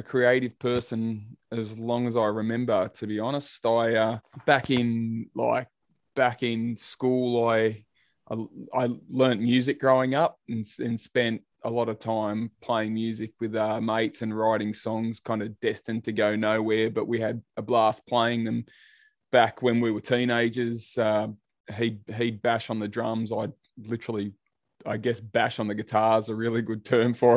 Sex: male